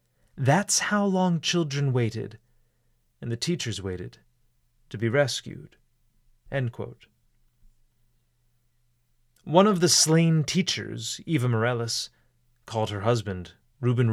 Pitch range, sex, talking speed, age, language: 115-130 Hz, male, 100 wpm, 30-49, English